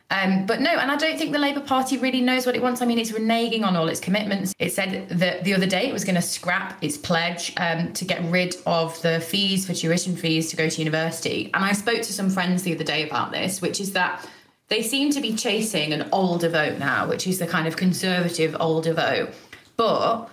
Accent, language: British, English